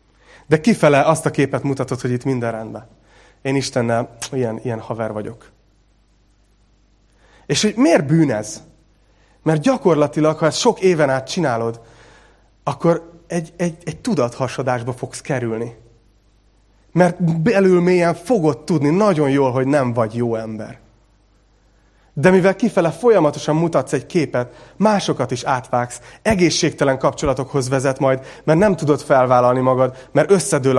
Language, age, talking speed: Hungarian, 30-49, 135 wpm